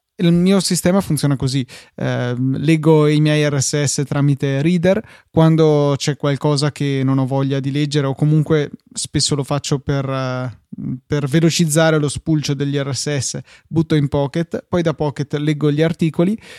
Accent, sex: native, male